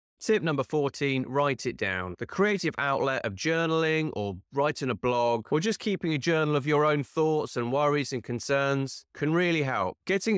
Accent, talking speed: British, 185 wpm